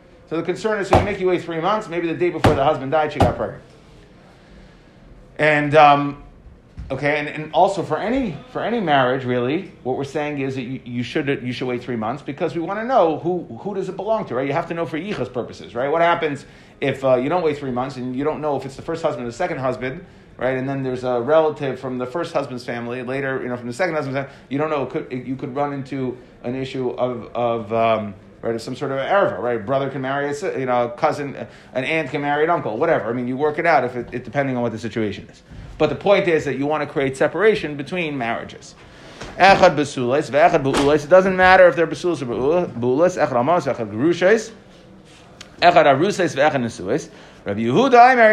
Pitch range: 125-170 Hz